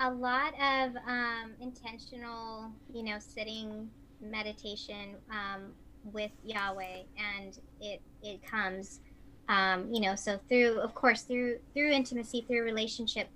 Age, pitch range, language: 30-49, 215-250 Hz, English